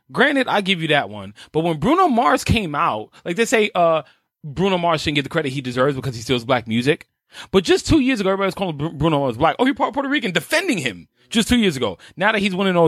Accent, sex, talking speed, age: American, male, 250 wpm, 20-39